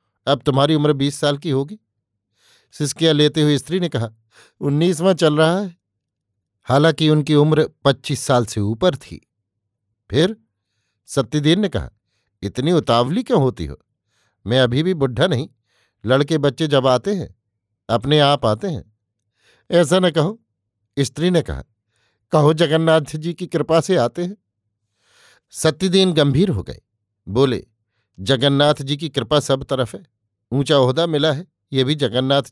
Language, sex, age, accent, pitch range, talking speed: Hindi, male, 50-69, native, 110-155 Hz, 150 wpm